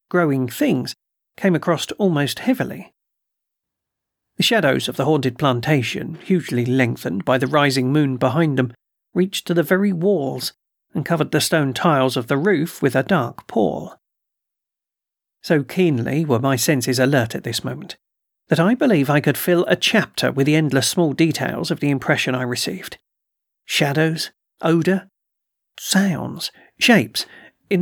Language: English